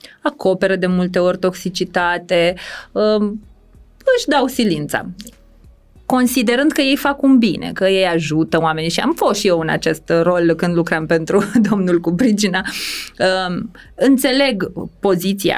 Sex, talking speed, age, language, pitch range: female, 125 wpm, 20-39, Romanian, 170-220 Hz